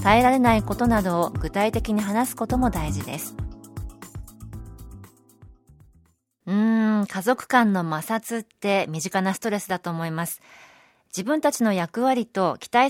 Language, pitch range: Japanese, 165-250 Hz